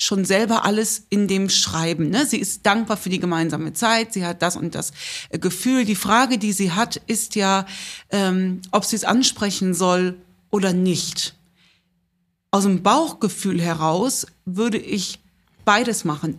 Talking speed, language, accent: 155 wpm, German, German